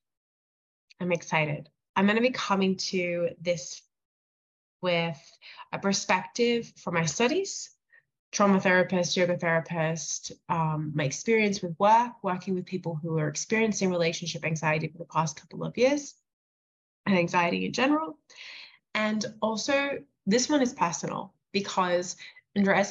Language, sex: English, female